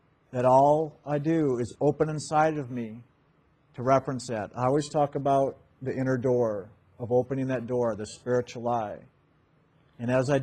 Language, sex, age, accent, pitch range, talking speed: English, male, 50-69, American, 125-145 Hz, 165 wpm